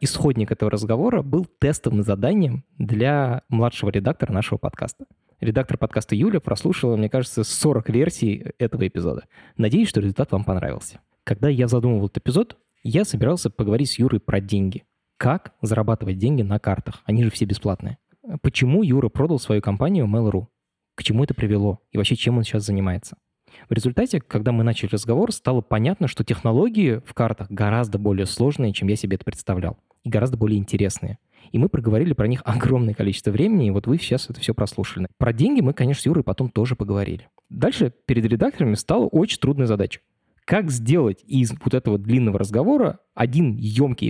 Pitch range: 105-135 Hz